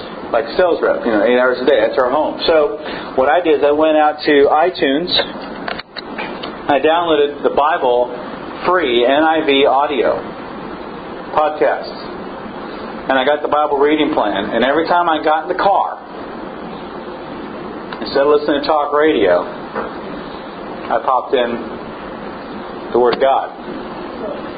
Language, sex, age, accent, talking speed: English, male, 50-69, American, 145 wpm